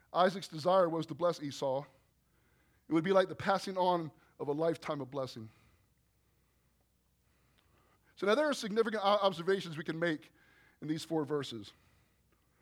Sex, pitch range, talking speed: male, 155-205 Hz, 145 wpm